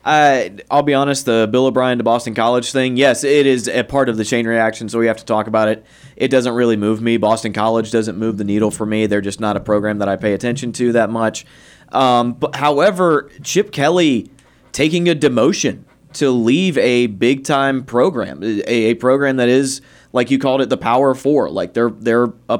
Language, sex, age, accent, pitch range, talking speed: English, male, 20-39, American, 115-135 Hz, 220 wpm